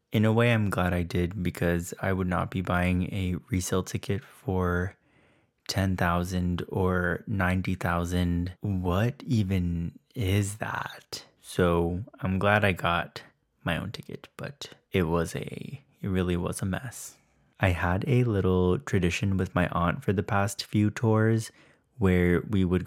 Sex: male